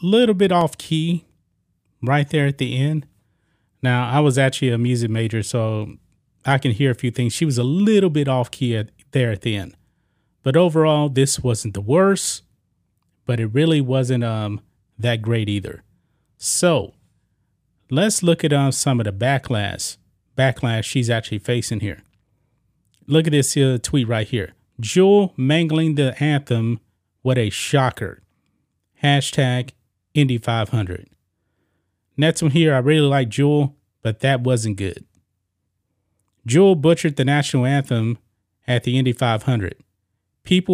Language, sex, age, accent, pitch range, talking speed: English, male, 30-49, American, 105-145 Hz, 150 wpm